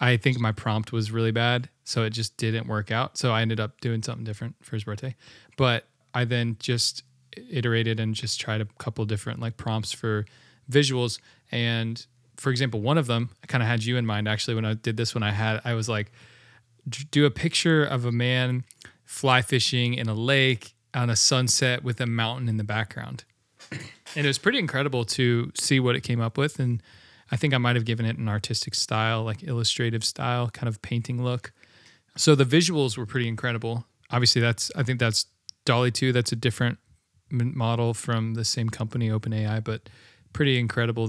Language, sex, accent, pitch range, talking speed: English, male, American, 115-130 Hz, 200 wpm